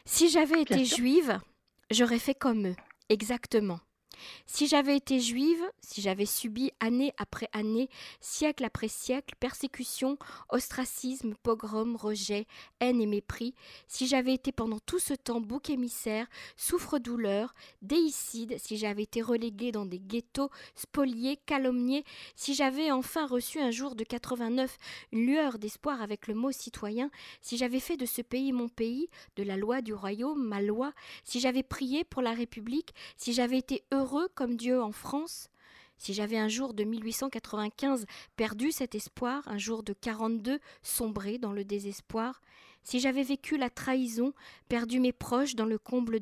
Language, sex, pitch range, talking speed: French, female, 220-275 Hz, 160 wpm